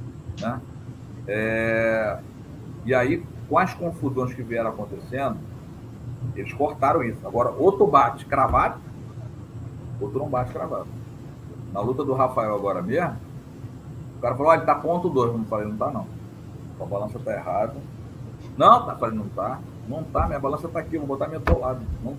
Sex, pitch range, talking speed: male, 120-150 Hz, 170 wpm